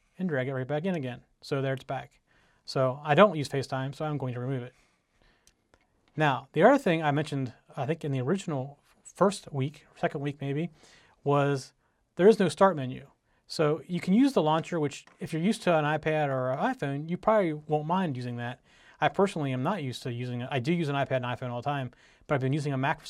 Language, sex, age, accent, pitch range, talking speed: English, male, 30-49, American, 130-170 Hz, 235 wpm